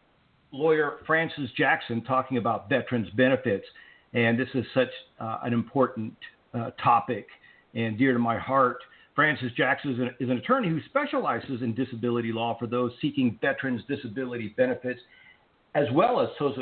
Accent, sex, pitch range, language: American, male, 125-160 Hz, English